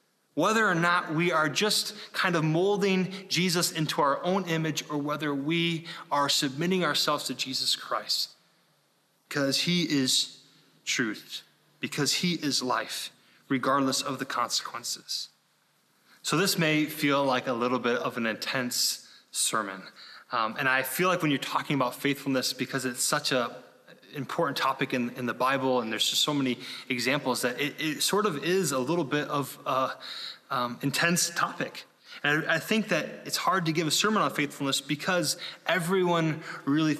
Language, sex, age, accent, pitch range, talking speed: English, male, 20-39, American, 135-170 Hz, 165 wpm